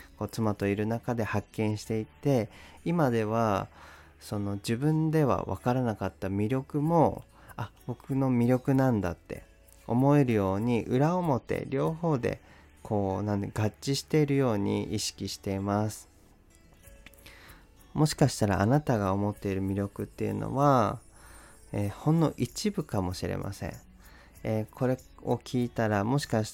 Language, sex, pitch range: Japanese, male, 95-125 Hz